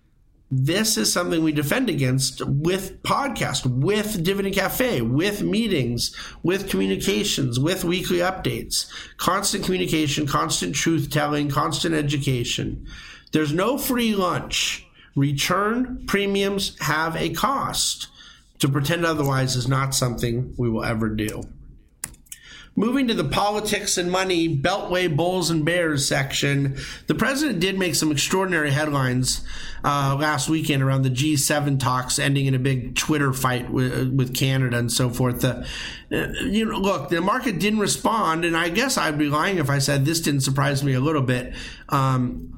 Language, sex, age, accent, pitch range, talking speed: English, male, 50-69, American, 135-185 Hz, 150 wpm